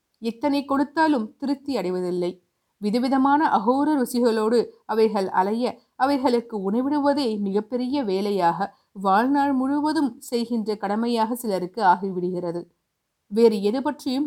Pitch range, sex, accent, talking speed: 195-260 Hz, female, native, 90 wpm